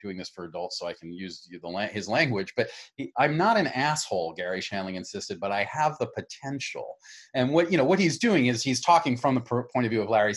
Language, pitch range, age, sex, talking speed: English, 95-125 Hz, 30-49, male, 245 wpm